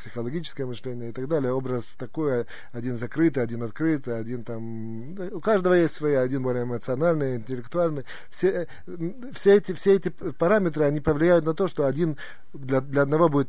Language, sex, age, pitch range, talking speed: Russian, male, 30-49, 125-165 Hz, 165 wpm